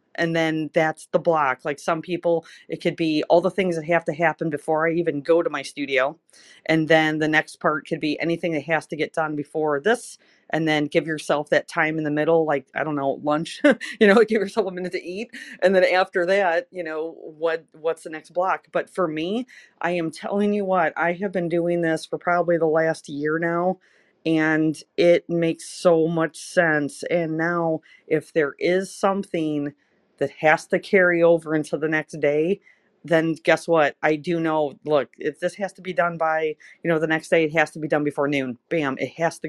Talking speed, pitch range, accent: 215 wpm, 155-175 Hz, American